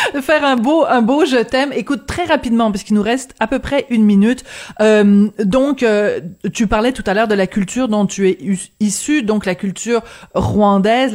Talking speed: 220 wpm